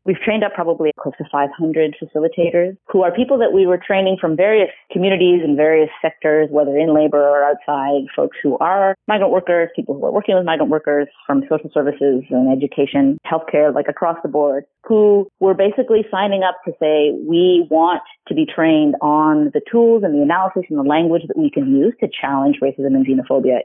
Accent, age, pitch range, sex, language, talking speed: American, 30-49, 145-185 Hz, female, English, 200 wpm